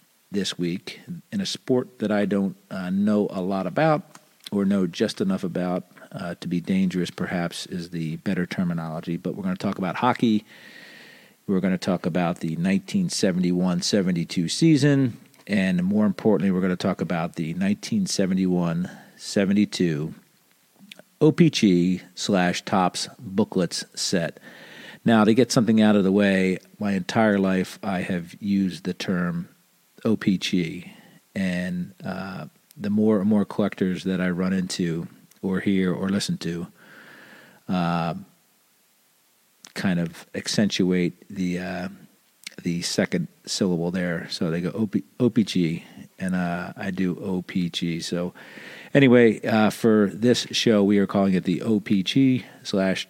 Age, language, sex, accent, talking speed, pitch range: 50-69, English, male, American, 140 wpm, 90-115 Hz